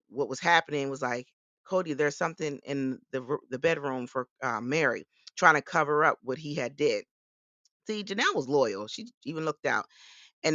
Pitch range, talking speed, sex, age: 135-160 Hz, 180 wpm, female, 30-49